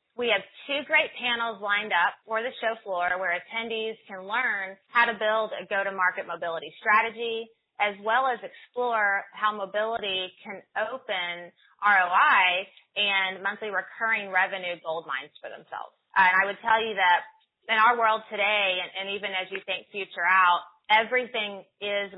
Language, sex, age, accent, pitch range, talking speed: English, female, 20-39, American, 185-220 Hz, 155 wpm